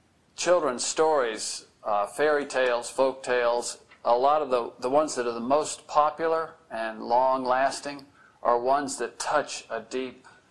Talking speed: 150 wpm